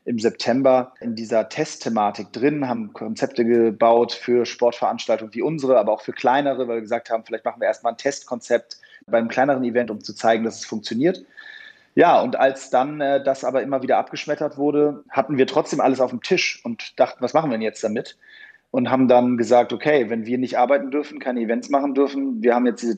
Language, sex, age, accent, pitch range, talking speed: German, male, 30-49, German, 115-140 Hz, 210 wpm